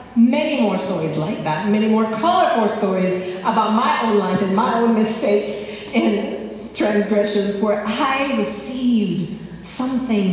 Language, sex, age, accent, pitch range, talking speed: English, female, 40-59, American, 185-240 Hz, 135 wpm